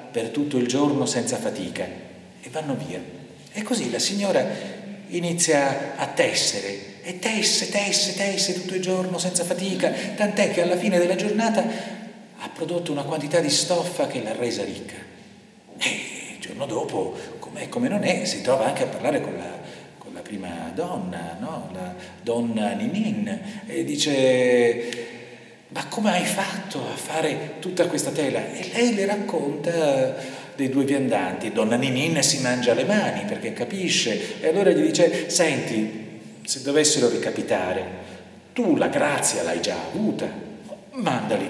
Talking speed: 145 wpm